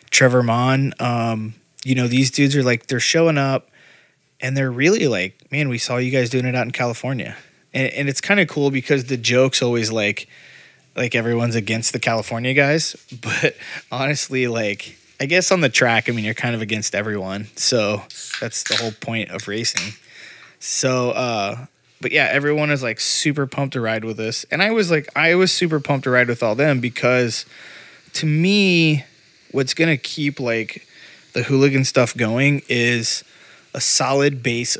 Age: 20-39